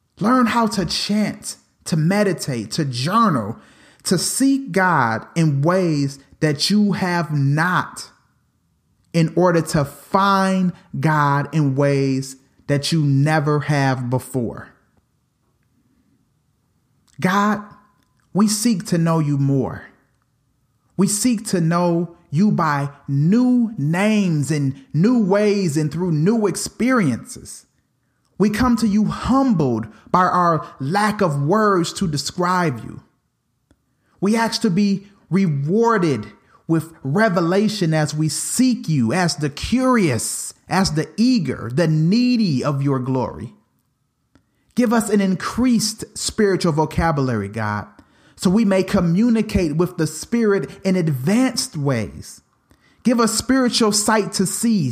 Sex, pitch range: male, 145-210 Hz